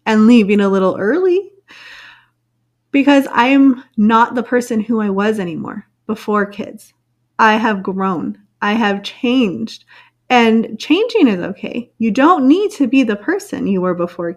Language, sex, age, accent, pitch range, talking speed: English, female, 30-49, American, 200-255 Hz, 155 wpm